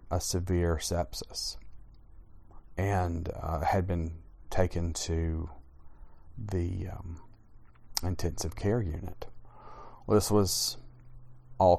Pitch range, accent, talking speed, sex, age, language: 80-100 Hz, American, 90 wpm, male, 40-59, English